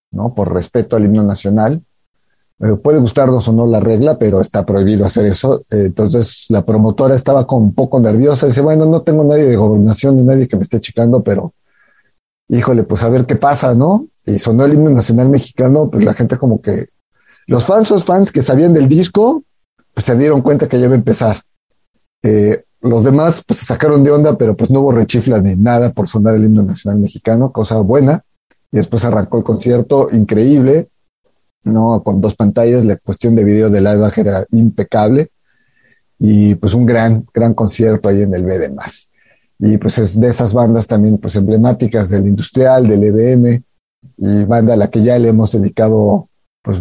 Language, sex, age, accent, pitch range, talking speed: Spanish, male, 40-59, Mexican, 105-135 Hz, 195 wpm